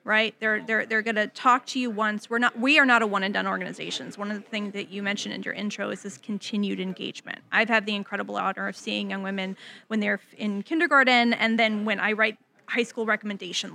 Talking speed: 240 wpm